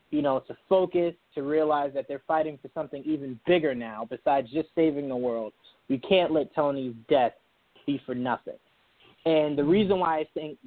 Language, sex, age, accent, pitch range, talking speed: English, male, 20-39, American, 135-165 Hz, 185 wpm